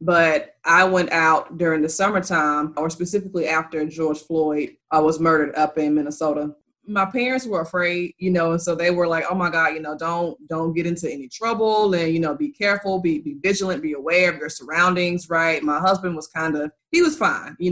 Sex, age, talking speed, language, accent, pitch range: female, 20-39, 210 wpm, English, American, 155-180 Hz